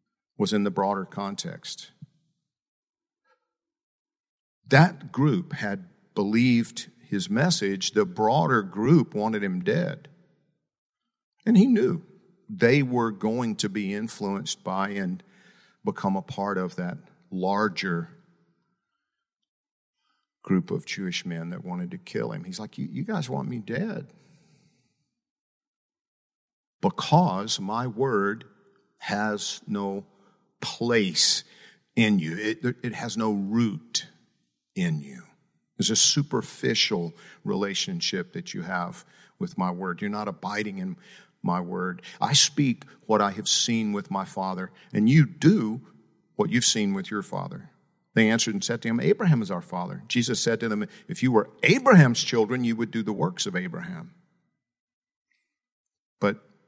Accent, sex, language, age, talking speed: American, male, English, 50-69, 135 wpm